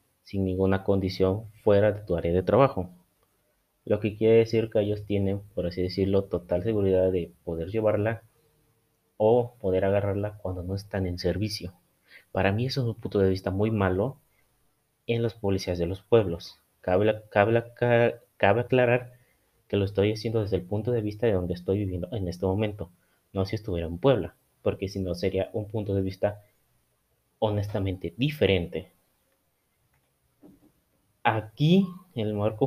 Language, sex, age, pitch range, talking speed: Spanish, male, 30-49, 95-110 Hz, 155 wpm